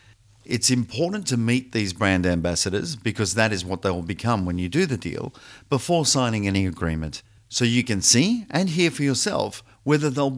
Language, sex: Italian, male